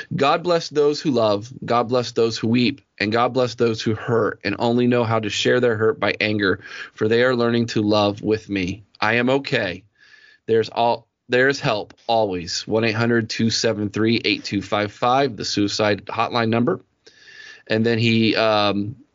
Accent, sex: American, male